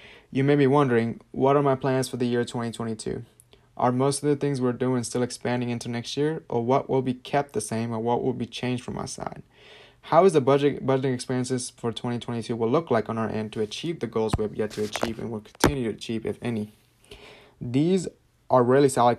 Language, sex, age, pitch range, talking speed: English, male, 20-39, 115-135 Hz, 230 wpm